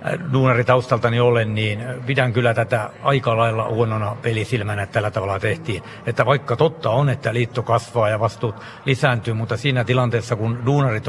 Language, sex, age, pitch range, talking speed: Finnish, male, 60-79, 115-130 Hz, 150 wpm